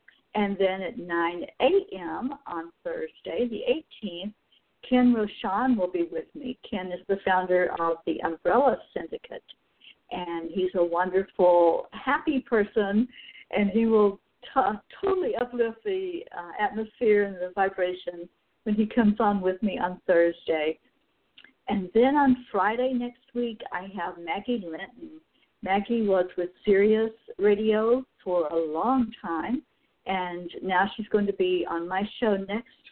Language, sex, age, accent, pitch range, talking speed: English, female, 60-79, American, 185-250 Hz, 140 wpm